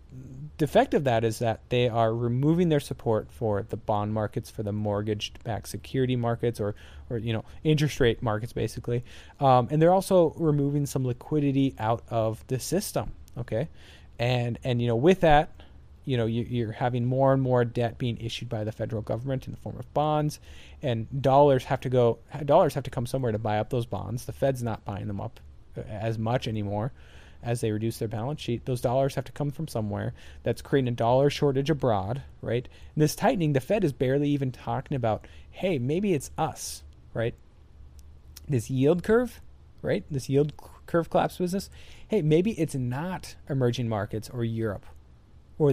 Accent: American